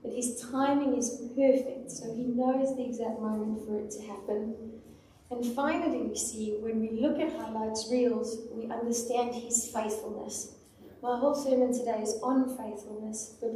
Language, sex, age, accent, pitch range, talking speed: English, female, 30-49, British, 220-255 Hz, 165 wpm